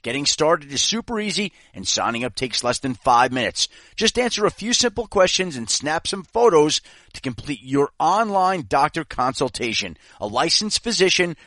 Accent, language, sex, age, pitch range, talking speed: American, English, male, 40-59, 135-210 Hz, 165 wpm